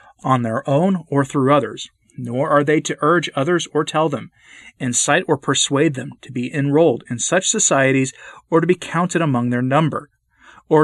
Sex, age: male, 40-59